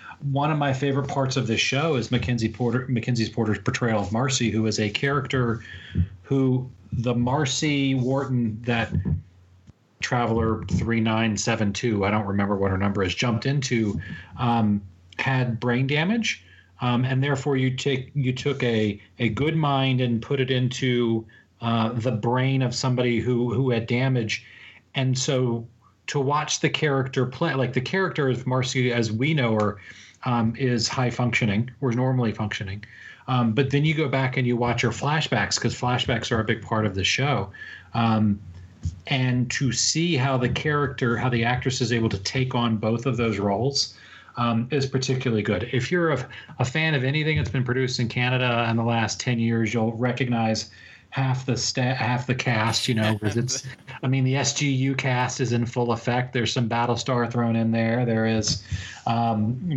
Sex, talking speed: male, 180 wpm